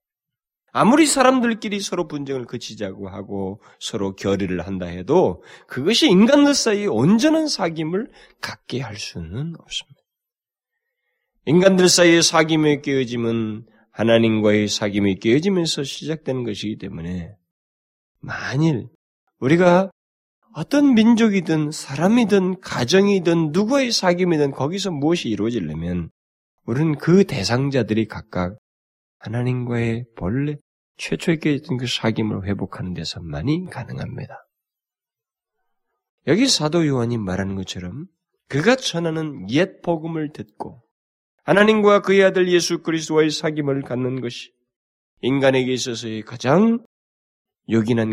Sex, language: male, Korean